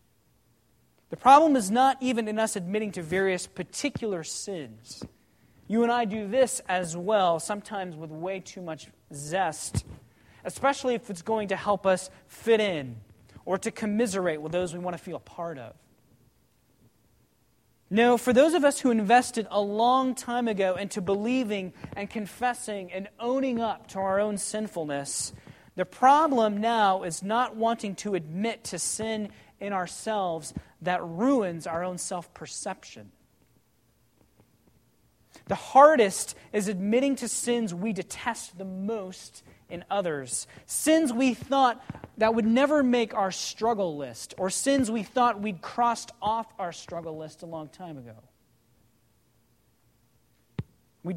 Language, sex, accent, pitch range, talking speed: English, male, American, 170-230 Hz, 145 wpm